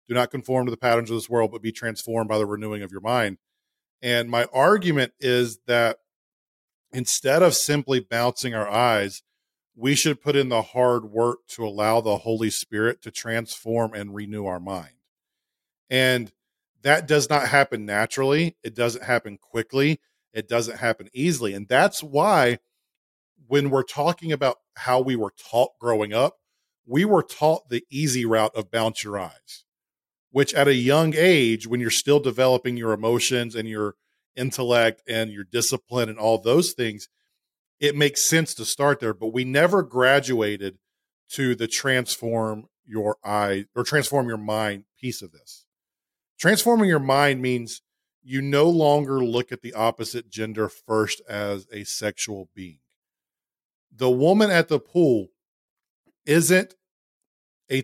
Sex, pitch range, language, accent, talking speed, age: male, 110-140 Hz, English, American, 155 wpm, 40-59